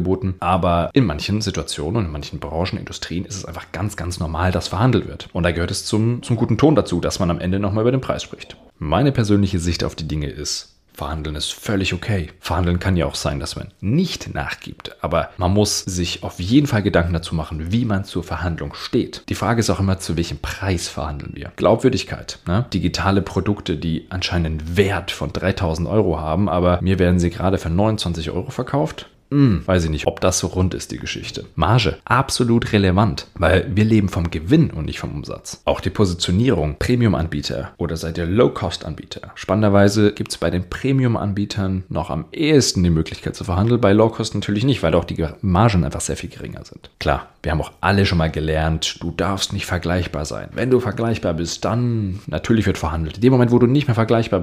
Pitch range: 85-105 Hz